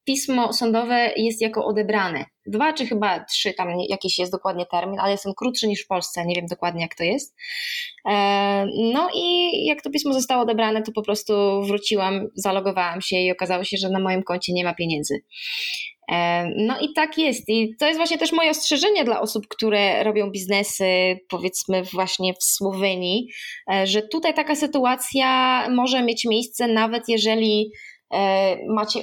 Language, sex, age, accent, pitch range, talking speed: Polish, female, 20-39, native, 195-240 Hz, 165 wpm